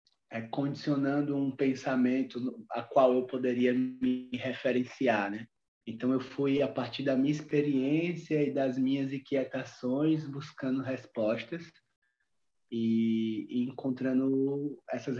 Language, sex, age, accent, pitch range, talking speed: Portuguese, male, 20-39, Brazilian, 125-150 Hz, 105 wpm